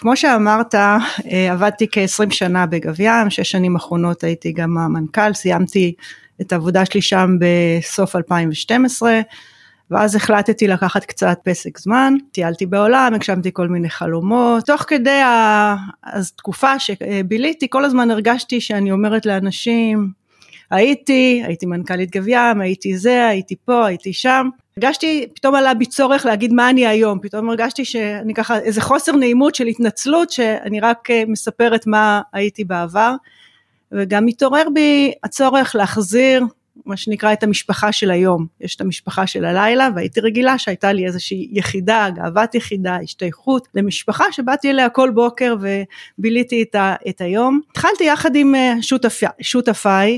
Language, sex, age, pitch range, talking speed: Hebrew, female, 30-49, 190-245 Hz, 135 wpm